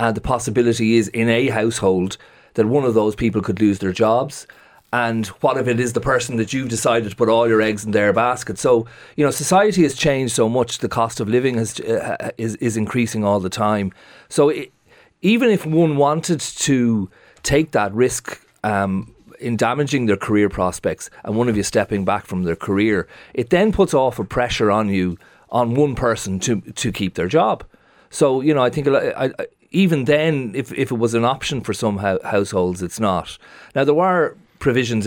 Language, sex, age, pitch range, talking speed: English, male, 40-59, 105-135 Hz, 210 wpm